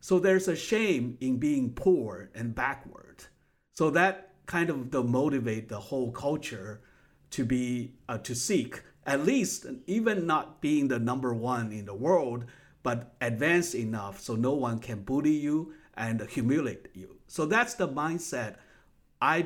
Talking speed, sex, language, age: 155 wpm, male, English, 60-79